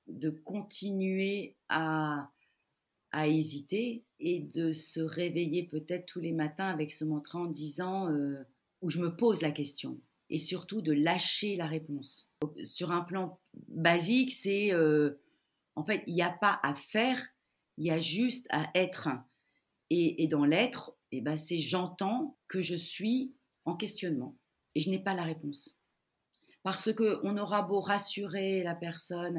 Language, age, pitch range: French, 40-59, 155-195 Hz